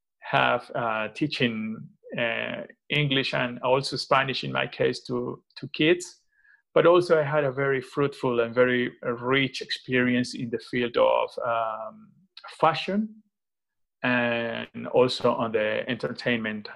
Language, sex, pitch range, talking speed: English, male, 125-160 Hz, 130 wpm